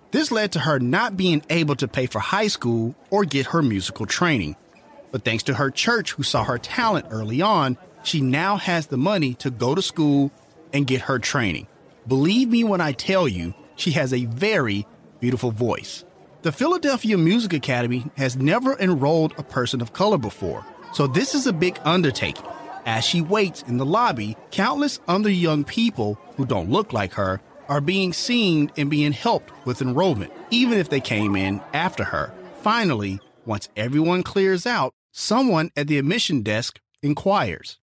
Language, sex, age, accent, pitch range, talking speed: English, male, 30-49, American, 120-180 Hz, 180 wpm